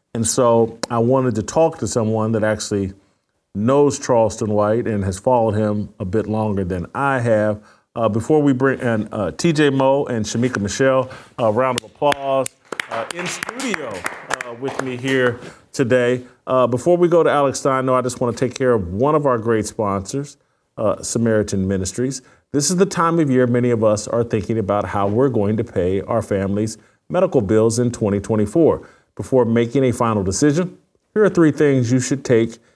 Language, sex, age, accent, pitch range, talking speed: English, male, 40-59, American, 110-140 Hz, 190 wpm